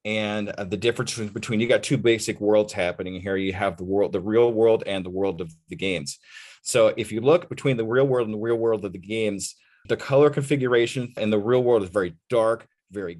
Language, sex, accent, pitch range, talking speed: English, male, American, 100-120 Hz, 225 wpm